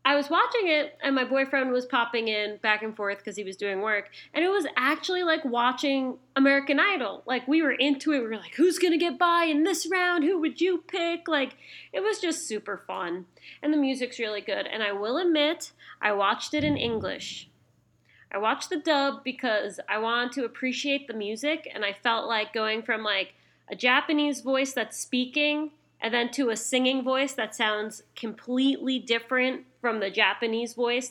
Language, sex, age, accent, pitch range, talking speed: English, female, 20-39, American, 220-295 Hz, 200 wpm